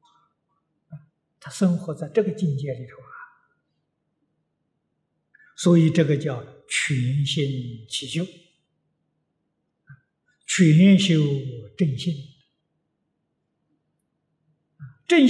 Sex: male